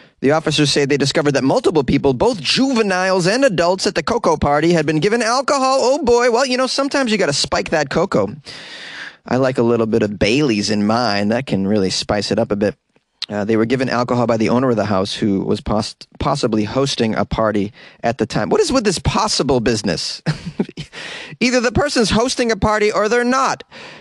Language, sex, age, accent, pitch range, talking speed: English, male, 30-49, American, 130-215 Hz, 210 wpm